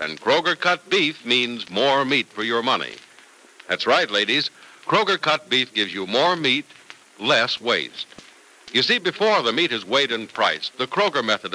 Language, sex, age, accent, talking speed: English, male, 60-79, American, 175 wpm